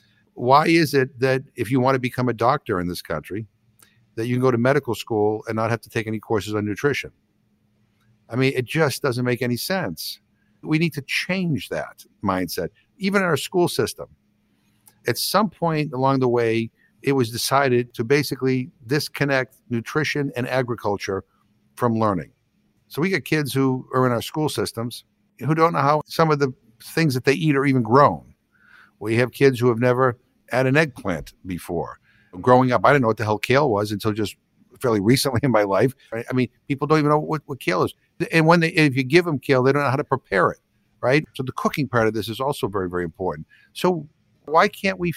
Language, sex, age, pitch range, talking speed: English, male, 60-79, 115-150 Hz, 210 wpm